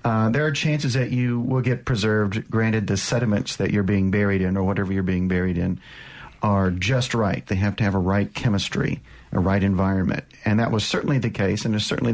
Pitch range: 100-125 Hz